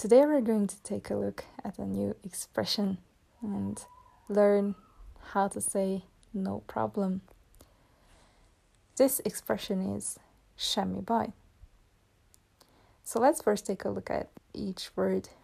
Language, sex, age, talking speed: Hungarian, female, 20-39, 125 wpm